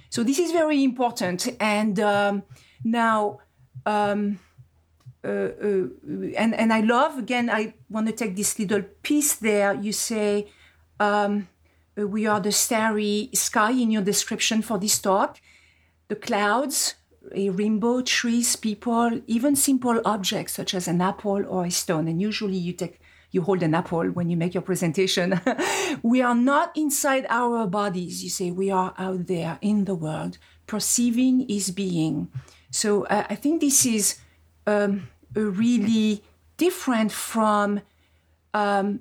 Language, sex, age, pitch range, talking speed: English, female, 40-59, 185-230 Hz, 150 wpm